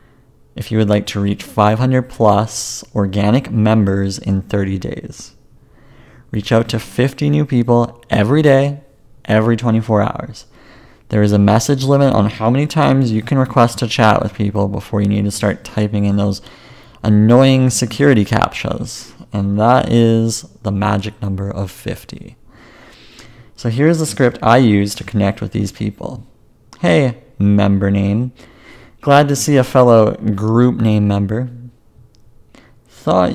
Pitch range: 100-120 Hz